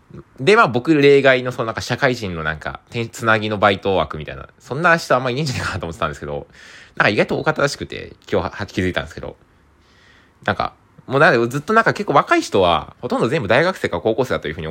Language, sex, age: Japanese, male, 20-39